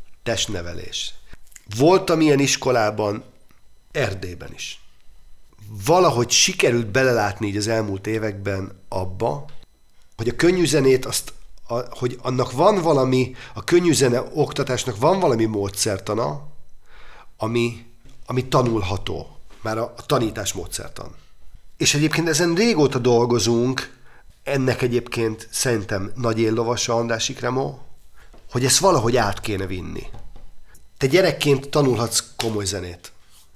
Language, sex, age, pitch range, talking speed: Hungarian, male, 40-59, 100-130 Hz, 105 wpm